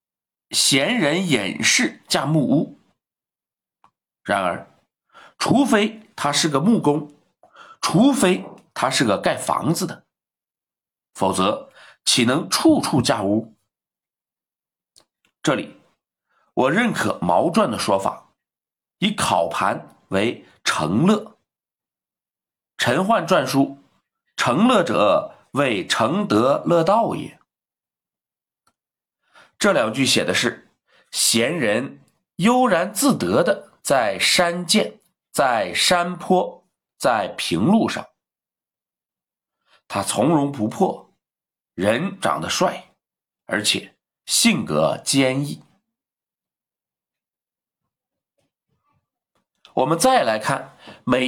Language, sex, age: Chinese, male, 50-69